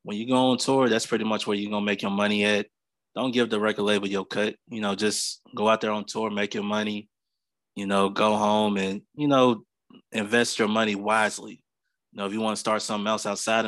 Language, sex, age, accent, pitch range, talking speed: English, male, 20-39, American, 100-115 Hz, 240 wpm